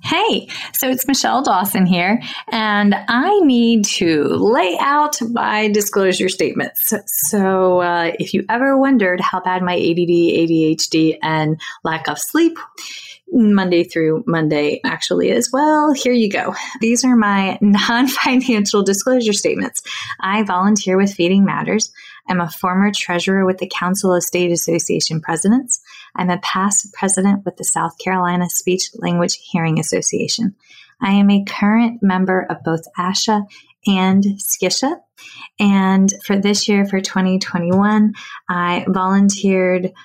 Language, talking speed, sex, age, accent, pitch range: English, 135 wpm, female, 20-39, American, 175-215 Hz